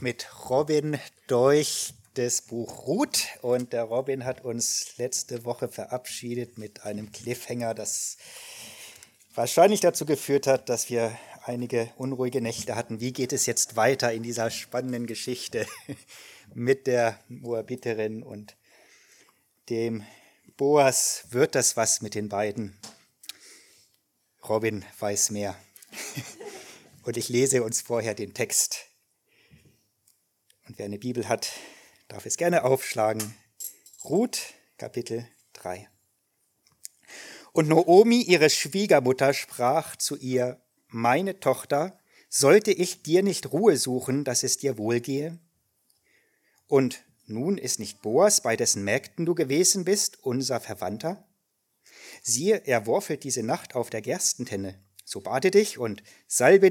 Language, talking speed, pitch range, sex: German, 120 wpm, 115-140 Hz, male